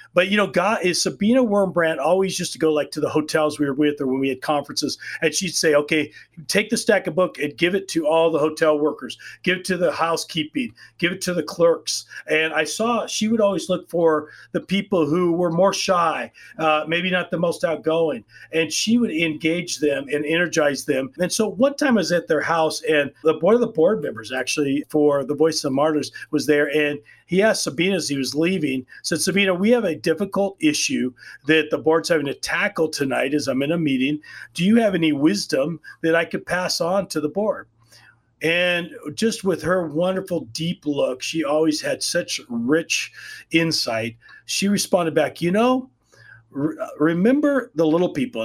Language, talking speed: English, 205 wpm